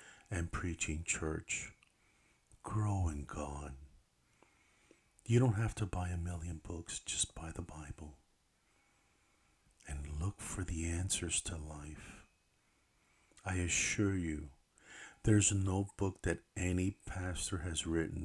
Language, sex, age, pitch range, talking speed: English, male, 50-69, 80-100 Hz, 120 wpm